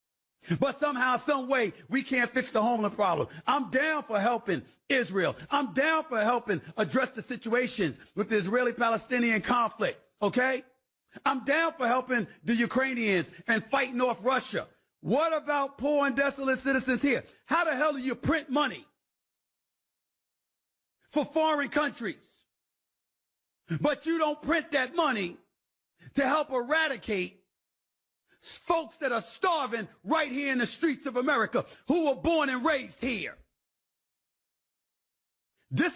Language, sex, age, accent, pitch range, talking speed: English, male, 50-69, American, 235-290 Hz, 135 wpm